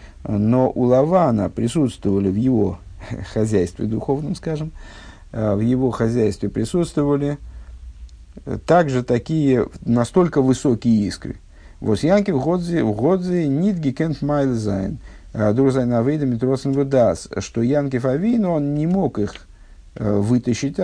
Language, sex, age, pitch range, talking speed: Russian, male, 50-69, 100-140 Hz, 95 wpm